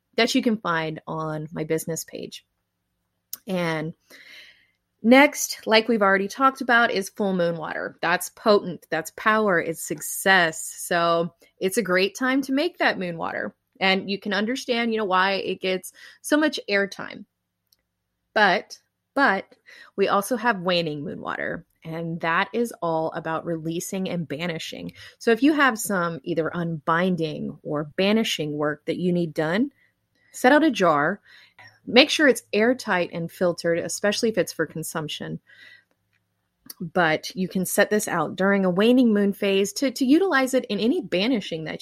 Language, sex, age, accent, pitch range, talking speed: English, female, 30-49, American, 165-235 Hz, 160 wpm